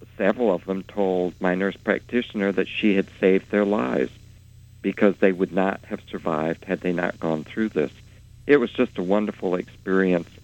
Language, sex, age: English, male, 60-79